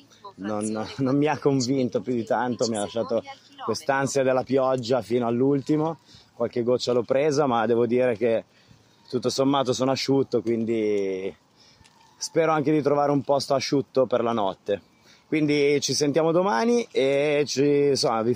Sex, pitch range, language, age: male, 105-135 Hz, Italian, 20-39